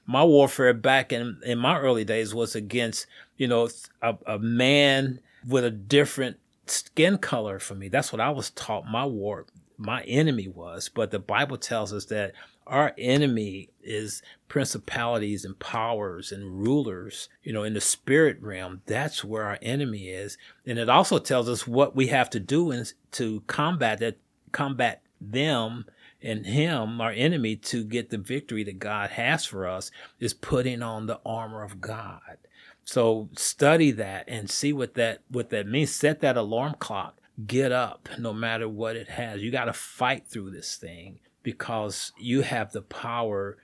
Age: 40-59